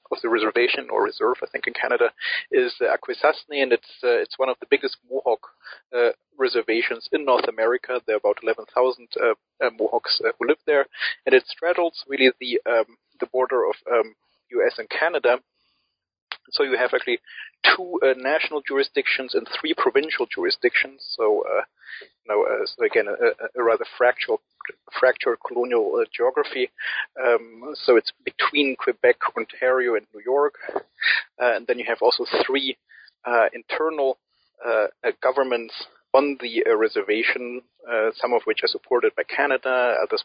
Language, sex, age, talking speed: English, male, 40-59, 160 wpm